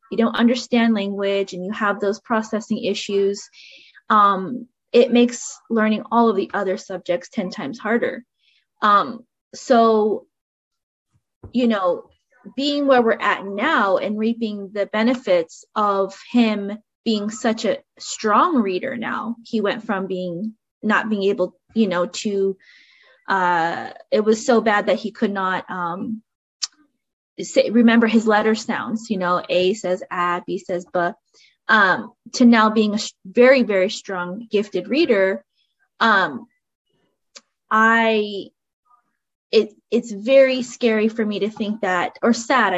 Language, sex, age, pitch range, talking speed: English, female, 20-39, 195-240 Hz, 140 wpm